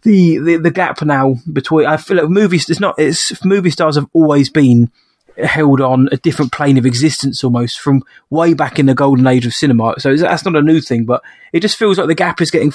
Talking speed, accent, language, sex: 240 wpm, British, English, male